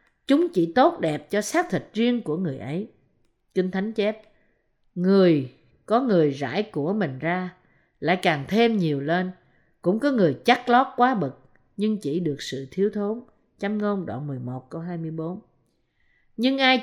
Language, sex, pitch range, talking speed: Vietnamese, female, 150-240 Hz, 170 wpm